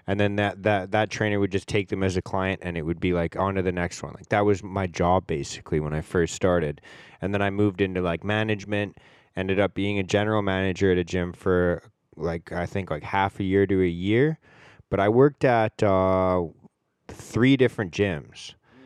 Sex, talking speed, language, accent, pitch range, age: male, 215 wpm, English, American, 95-110 Hz, 10-29